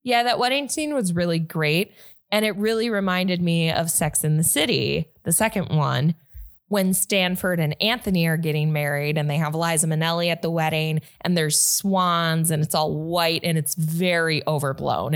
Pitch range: 155-190 Hz